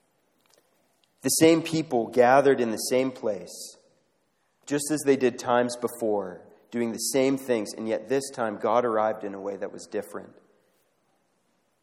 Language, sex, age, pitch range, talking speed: English, male, 30-49, 110-155 Hz, 150 wpm